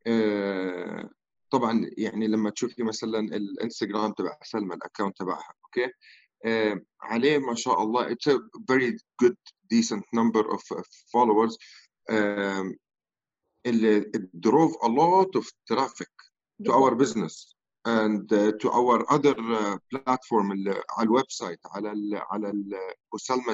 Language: Arabic